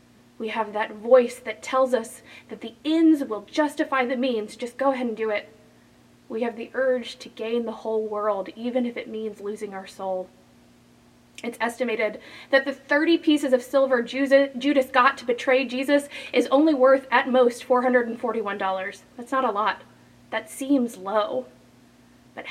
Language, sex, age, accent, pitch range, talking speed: English, female, 20-39, American, 215-260 Hz, 170 wpm